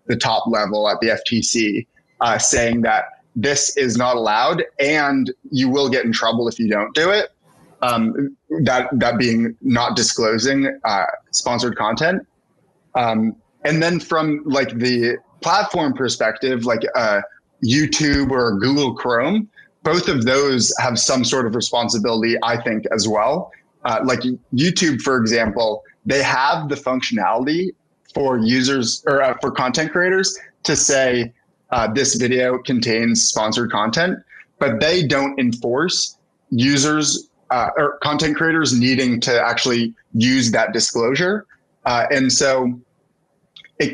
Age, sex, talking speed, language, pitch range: 20-39, male, 140 wpm, English, 115-145 Hz